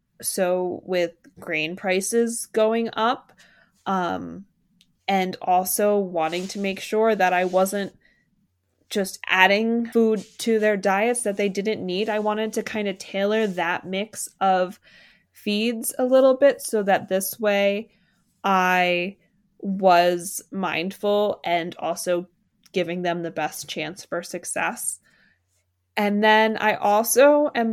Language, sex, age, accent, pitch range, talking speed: English, female, 20-39, American, 180-220 Hz, 130 wpm